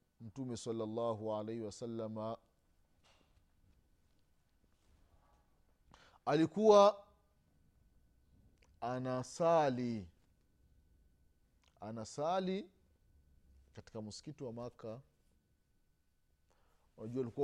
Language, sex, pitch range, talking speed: Swahili, male, 110-170 Hz, 45 wpm